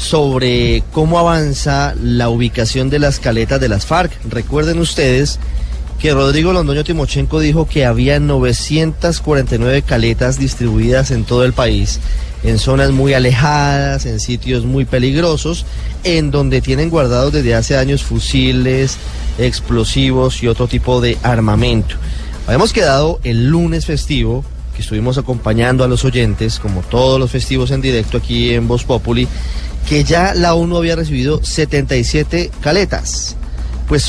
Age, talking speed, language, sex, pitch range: 30-49, 140 wpm, Spanish, male, 115-140 Hz